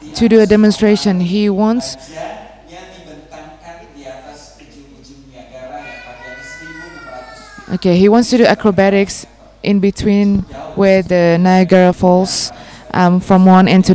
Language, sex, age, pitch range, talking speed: English, female, 20-39, 180-220 Hz, 100 wpm